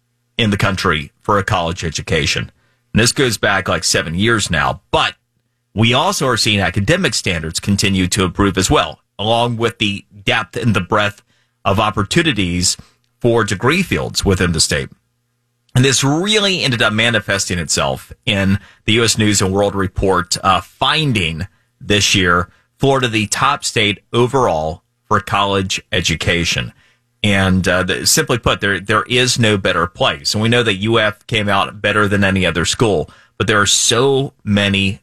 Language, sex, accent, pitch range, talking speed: English, male, American, 95-120 Hz, 165 wpm